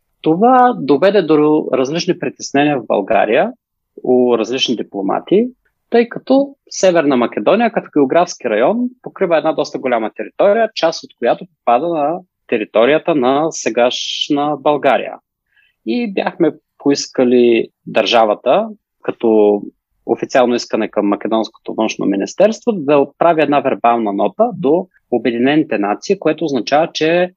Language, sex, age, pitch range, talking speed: Bulgarian, male, 30-49, 125-180 Hz, 115 wpm